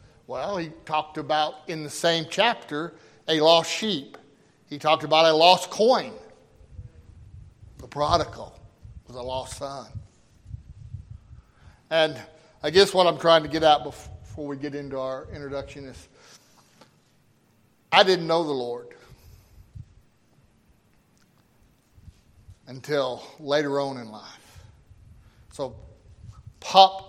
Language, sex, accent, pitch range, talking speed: English, male, American, 115-155 Hz, 115 wpm